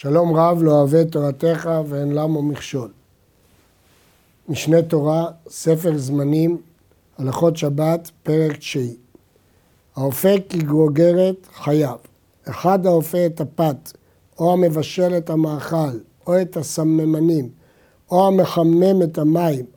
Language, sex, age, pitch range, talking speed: Hebrew, male, 60-79, 150-190 Hz, 105 wpm